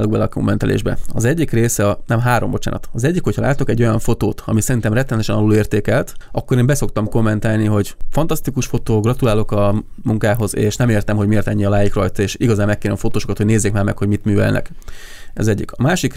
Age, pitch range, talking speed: 20-39, 105-120 Hz, 200 wpm